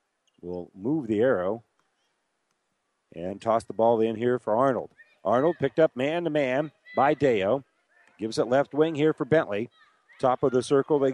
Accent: American